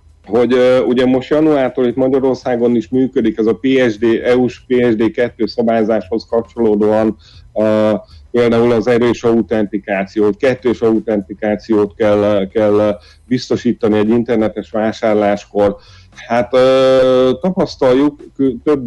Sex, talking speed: male, 105 wpm